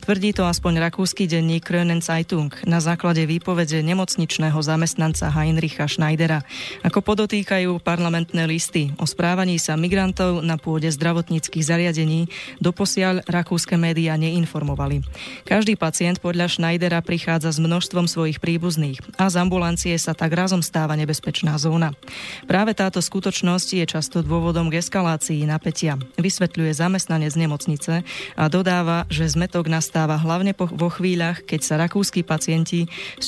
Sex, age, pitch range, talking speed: female, 20-39, 160-180 Hz, 135 wpm